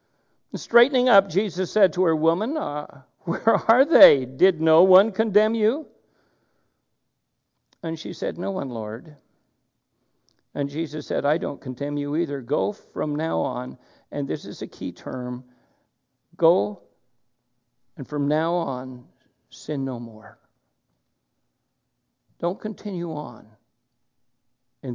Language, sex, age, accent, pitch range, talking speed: English, male, 60-79, American, 125-165 Hz, 125 wpm